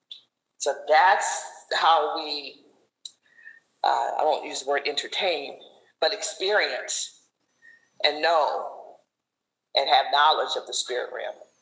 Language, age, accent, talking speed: English, 40-59, American, 115 wpm